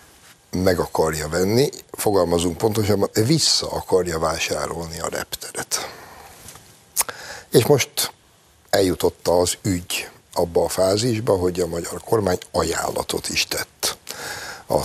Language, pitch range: Hungarian, 85-105 Hz